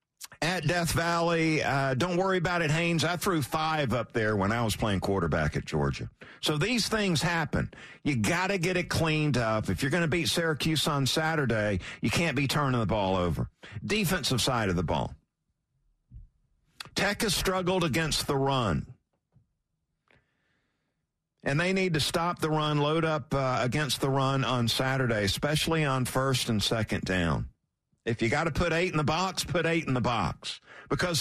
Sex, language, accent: male, English, American